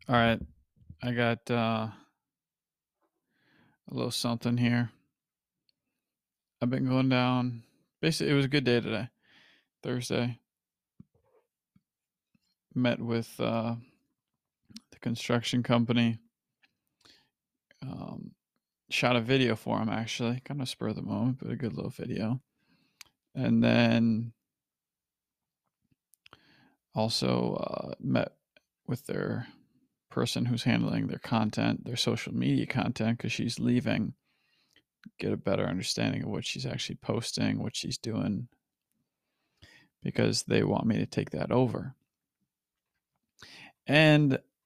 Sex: male